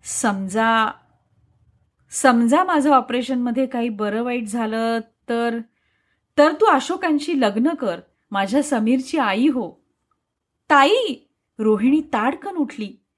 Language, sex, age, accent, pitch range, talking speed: Marathi, female, 30-49, native, 235-320 Hz, 100 wpm